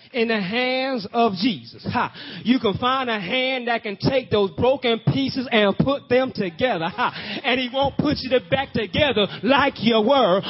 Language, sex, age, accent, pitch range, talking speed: English, male, 30-49, American, 210-255 Hz, 170 wpm